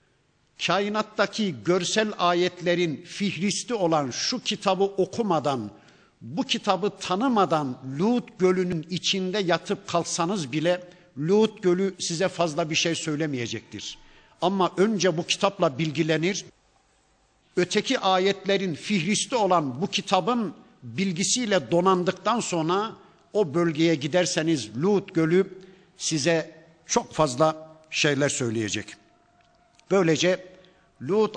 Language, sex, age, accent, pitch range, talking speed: Turkish, male, 60-79, native, 155-190 Hz, 95 wpm